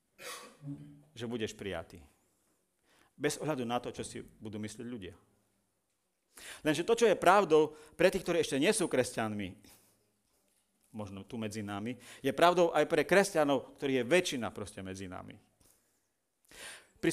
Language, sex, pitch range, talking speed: Slovak, male, 110-175 Hz, 140 wpm